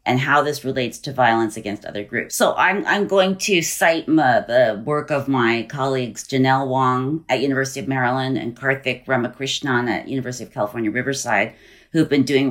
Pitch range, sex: 130-170 Hz, female